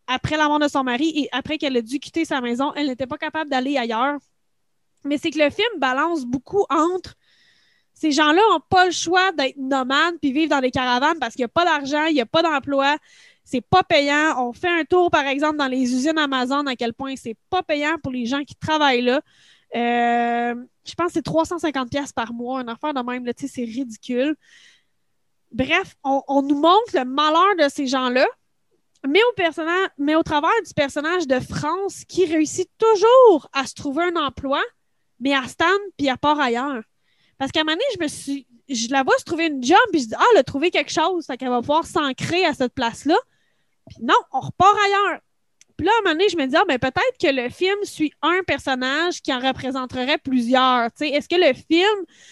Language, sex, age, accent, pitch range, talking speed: French, female, 20-39, Canadian, 265-335 Hz, 220 wpm